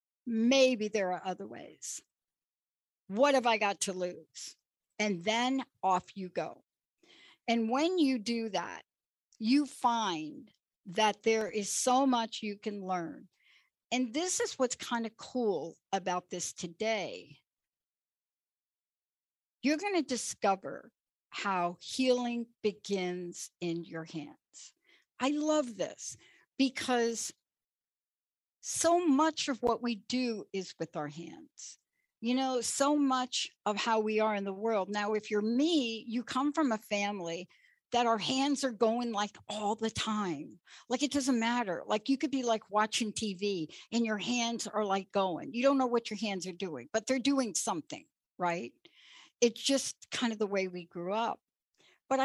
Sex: female